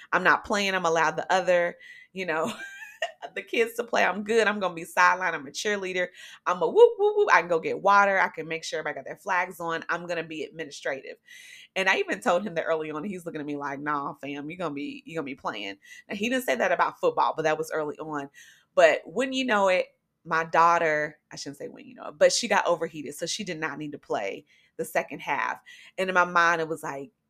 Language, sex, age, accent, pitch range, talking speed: English, female, 30-49, American, 165-230 Hz, 255 wpm